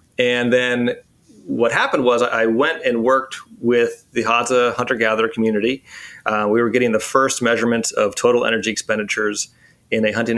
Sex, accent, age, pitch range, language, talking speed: male, American, 30-49, 105-125 Hz, English, 160 wpm